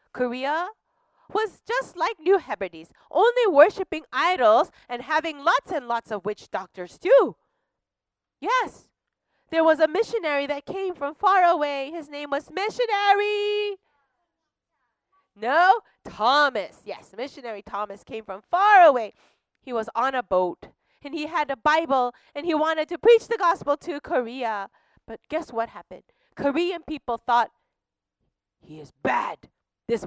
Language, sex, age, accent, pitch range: Korean, female, 30-49, American, 215-350 Hz